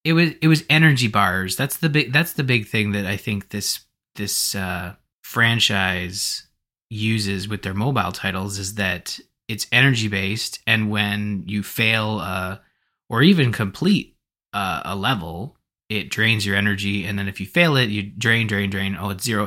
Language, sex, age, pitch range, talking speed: English, male, 20-39, 100-125 Hz, 180 wpm